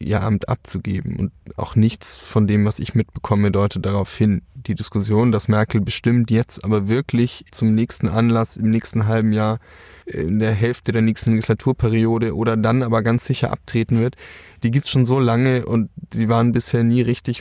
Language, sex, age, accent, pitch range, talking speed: German, male, 20-39, German, 105-120 Hz, 185 wpm